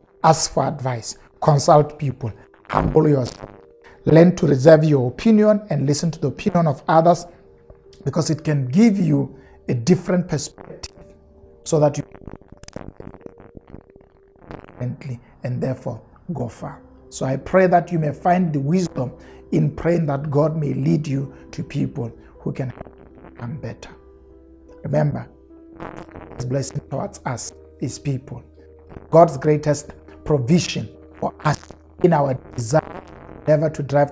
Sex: male